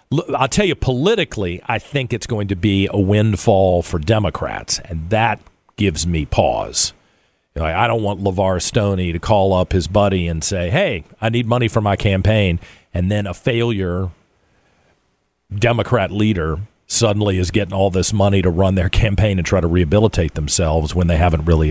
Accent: American